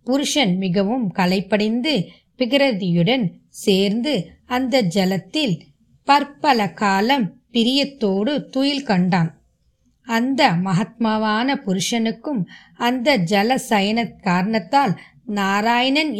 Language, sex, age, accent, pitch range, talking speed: Tamil, female, 20-39, native, 195-260 Hz, 75 wpm